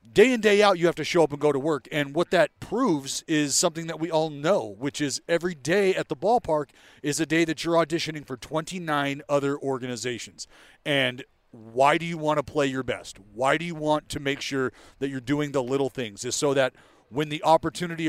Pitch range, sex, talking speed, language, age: 125-160 Hz, male, 225 wpm, English, 40-59